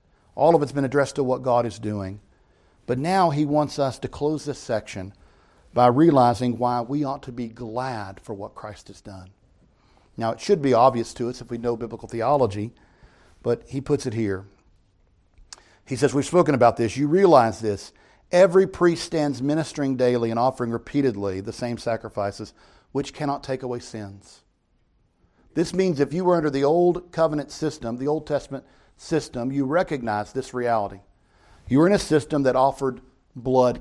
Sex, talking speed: male, 175 wpm